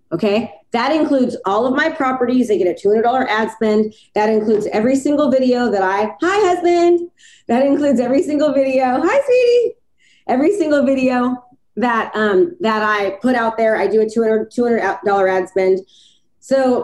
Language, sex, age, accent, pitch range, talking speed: English, female, 30-49, American, 215-280 Hz, 170 wpm